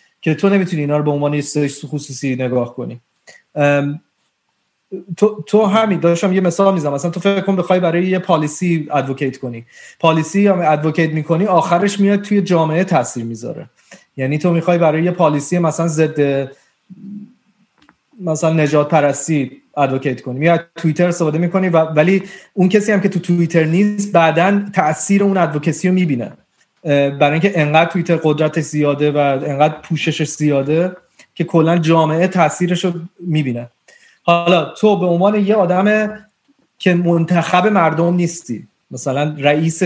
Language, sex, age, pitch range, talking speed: Persian, male, 30-49, 150-185 Hz, 140 wpm